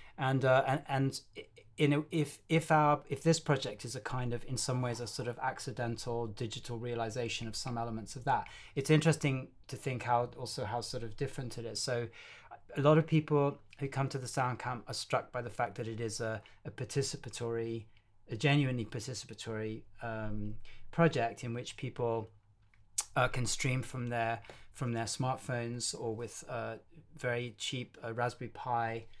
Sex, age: male, 30-49